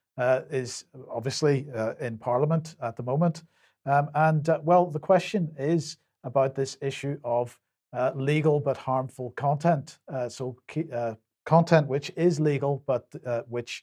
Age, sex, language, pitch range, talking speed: 50-69, male, English, 125-150 Hz, 150 wpm